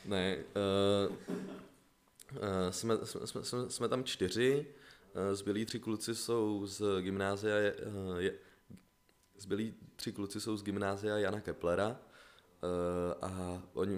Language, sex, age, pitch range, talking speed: Czech, male, 20-39, 85-100 Hz, 120 wpm